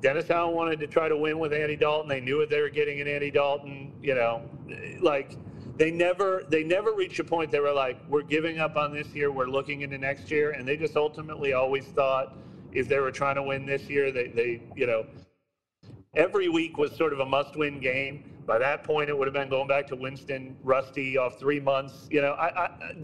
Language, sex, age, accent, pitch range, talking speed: English, male, 40-59, American, 130-150 Hz, 230 wpm